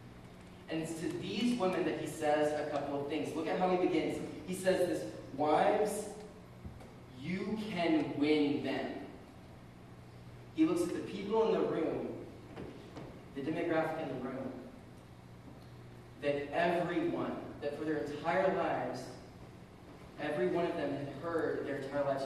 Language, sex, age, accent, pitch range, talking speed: English, male, 20-39, American, 125-170 Hz, 145 wpm